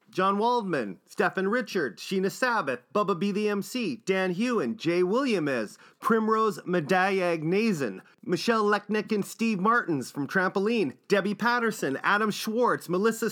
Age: 30-49